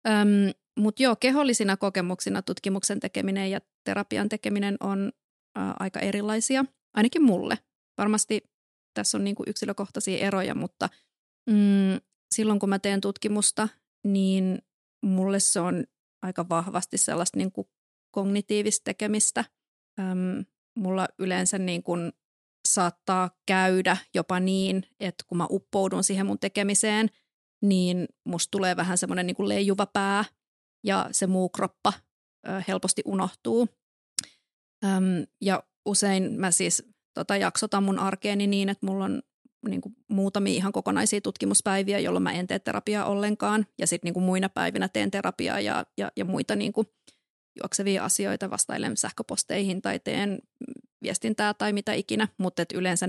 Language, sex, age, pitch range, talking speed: Finnish, female, 30-49, 185-210 Hz, 125 wpm